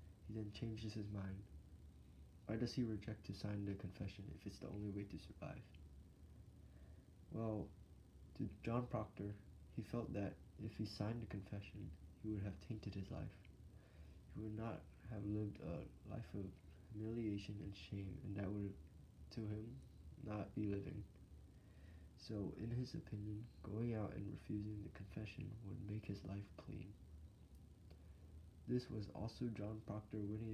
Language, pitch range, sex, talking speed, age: English, 85-110 Hz, male, 150 wpm, 20-39